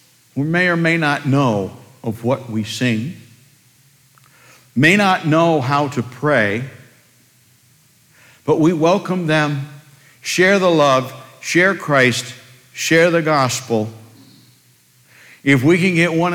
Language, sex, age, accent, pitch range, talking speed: English, male, 60-79, American, 110-140 Hz, 120 wpm